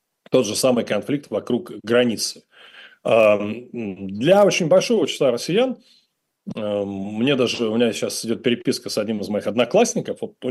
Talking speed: 135 wpm